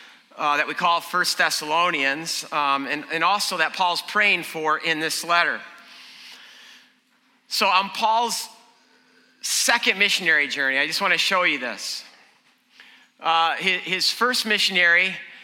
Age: 50-69